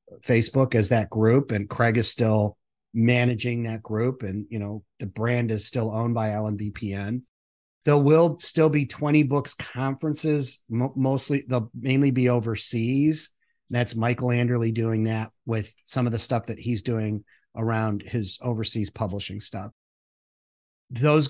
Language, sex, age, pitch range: English, male, 30-49, 110-140 Hz